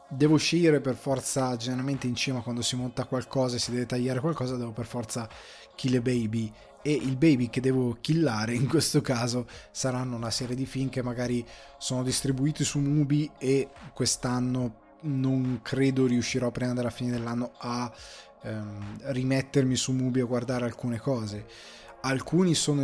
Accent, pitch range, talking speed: native, 120-140 Hz, 160 wpm